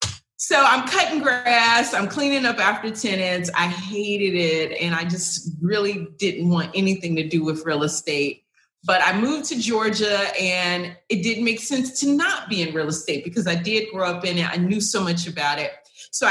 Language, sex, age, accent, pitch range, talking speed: English, female, 30-49, American, 170-215 Hz, 200 wpm